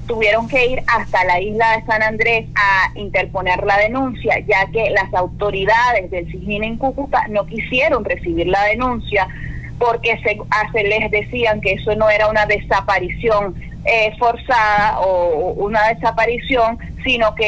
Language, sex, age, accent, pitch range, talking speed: Spanish, female, 30-49, Venezuelan, 195-245 Hz, 150 wpm